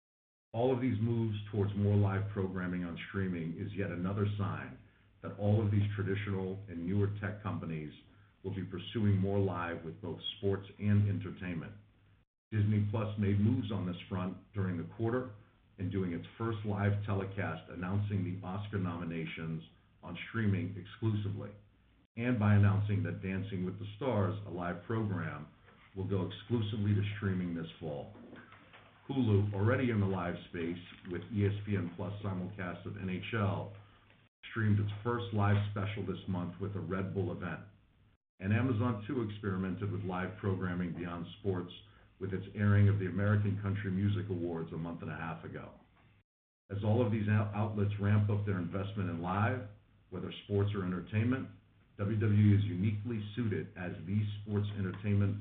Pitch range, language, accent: 90-105 Hz, English, American